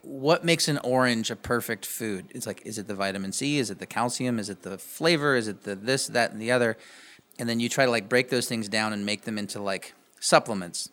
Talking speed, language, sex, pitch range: 255 wpm, English, male, 110-140 Hz